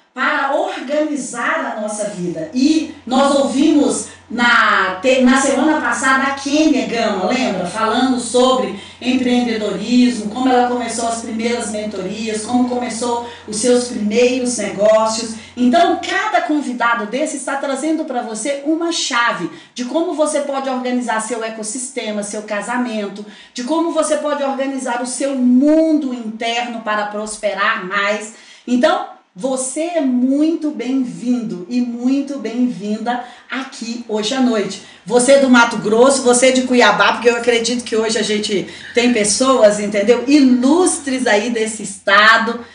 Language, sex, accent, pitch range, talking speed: Portuguese, female, Brazilian, 220-275 Hz, 135 wpm